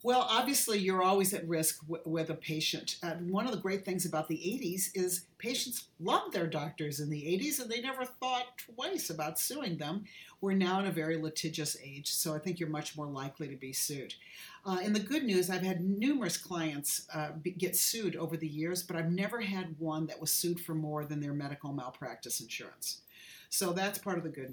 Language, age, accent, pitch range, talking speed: English, 50-69, American, 155-195 Hz, 215 wpm